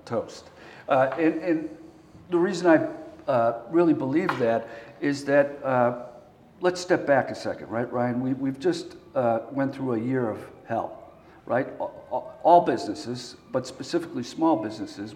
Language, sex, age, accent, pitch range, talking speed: English, male, 50-69, American, 125-160 Hz, 155 wpm